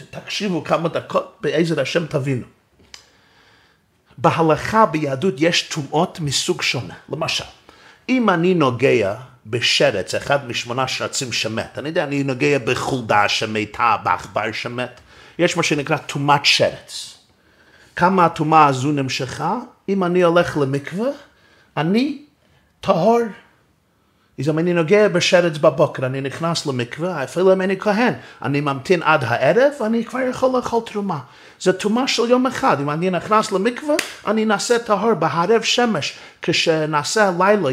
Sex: male